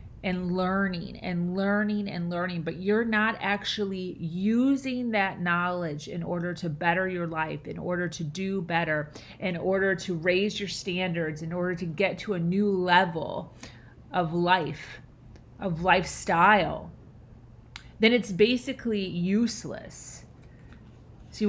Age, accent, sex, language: 30-49, American, female, English